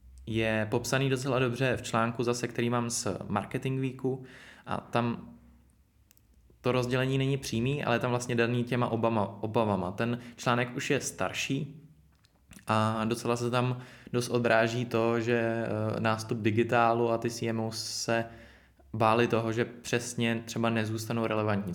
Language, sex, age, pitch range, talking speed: Czech, male, 20-39, 110-120 Hz, 145 wpm